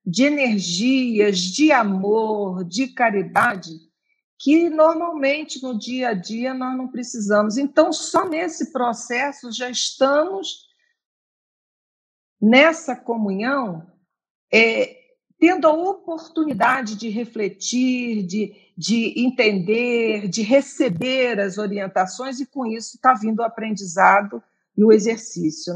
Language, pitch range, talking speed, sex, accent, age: Portuguese, 210-295 Hz, 105 wpm, female, Brazilian, 50-69